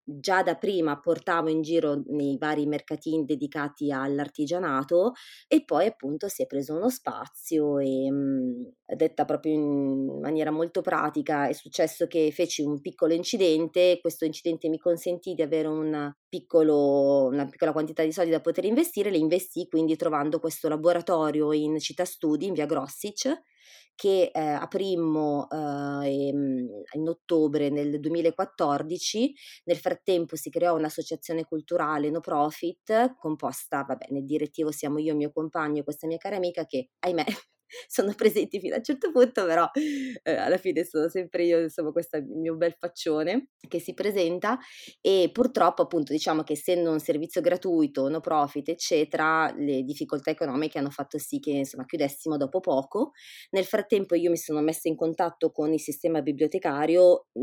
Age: 20-39